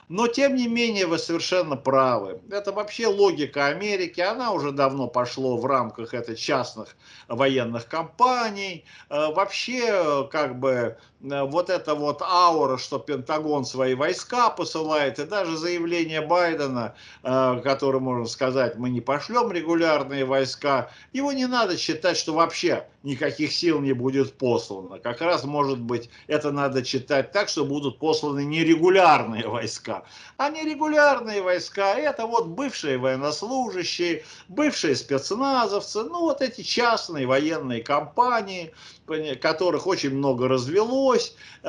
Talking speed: 125 wpm